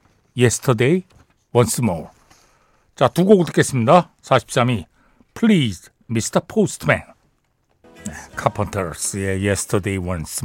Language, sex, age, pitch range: Korean, male, 60-79, 110-175 Hz